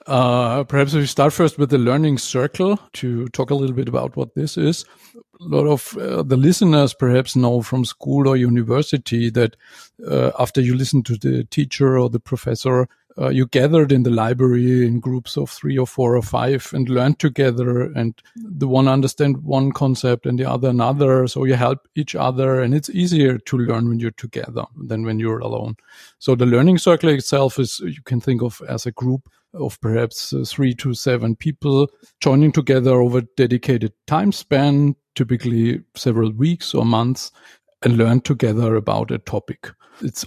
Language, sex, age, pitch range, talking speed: English, male, 50-69, 120-140 Hz, 185 wpm